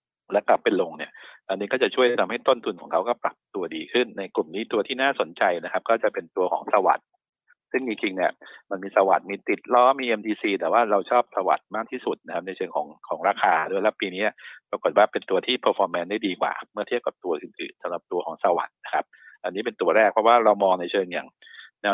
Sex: male